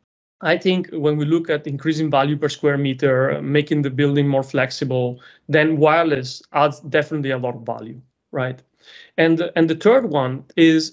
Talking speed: 170 wpm